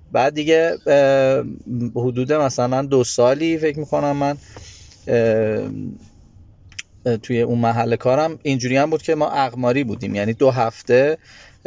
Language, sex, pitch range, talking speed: Persian, male, 120-150 Hz, 115 wpm